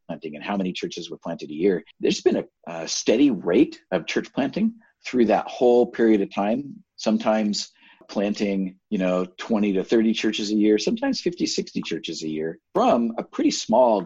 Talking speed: 185 wpm